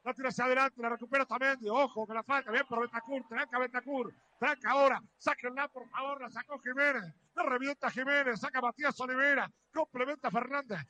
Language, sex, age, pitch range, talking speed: Spanish, male, 40-59, 245-295 Hz, 195 wpm